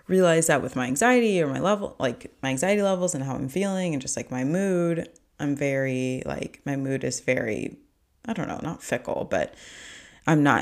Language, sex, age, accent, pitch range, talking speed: English, female, 20-39, American, 130-175 Hz, 205 wpm